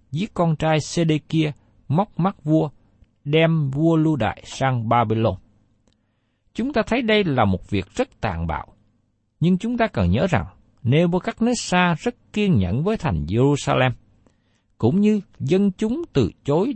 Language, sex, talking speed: Vietnamese, male, 150 wpm